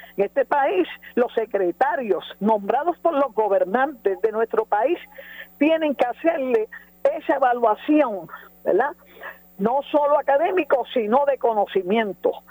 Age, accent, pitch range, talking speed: 50-69, American, 215-320 Hz, 115 wpm